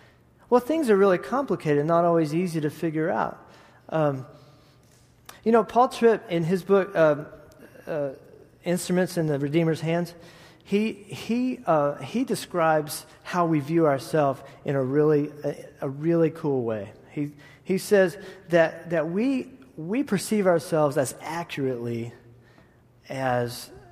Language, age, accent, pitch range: English, 40-59, American, 130-170 Hz